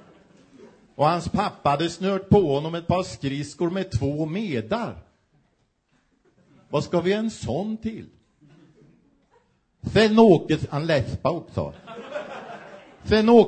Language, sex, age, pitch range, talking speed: Swedish, male, 50-69, 110-160 Hz, 110 wpm